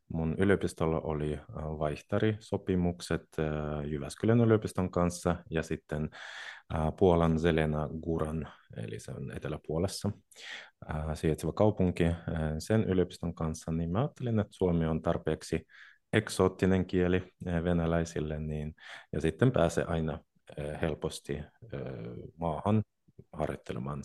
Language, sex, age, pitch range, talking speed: Finnish, male, 30-49, 80-95 Hz, 95 wpm